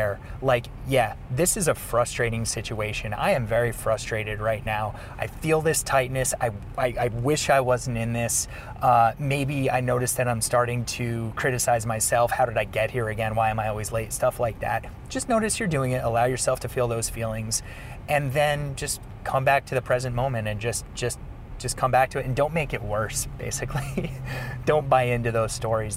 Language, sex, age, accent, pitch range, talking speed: English, male, 30-49, American, 110-130 Hz, 205 wpm